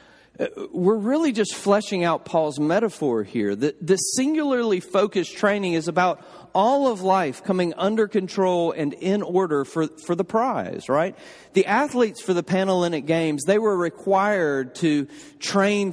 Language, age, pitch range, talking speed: English, 40-59, 170-225 Hz, 160 wpm